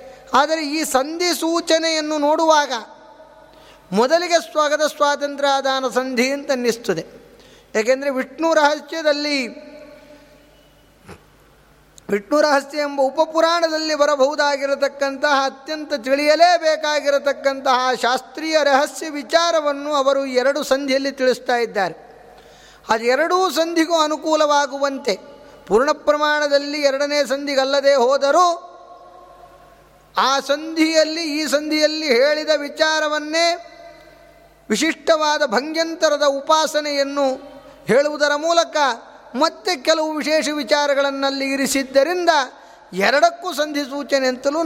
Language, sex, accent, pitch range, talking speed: Kannada, male, native, 265-310 Hz, 75 wpm